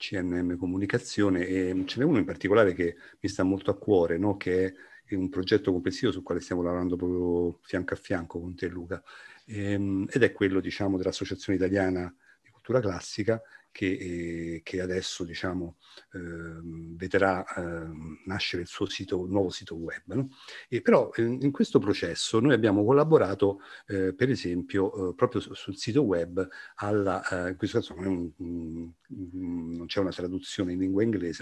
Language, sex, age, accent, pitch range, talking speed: Italian, male, 50-69, native, 85-100 Hz, 180 wpm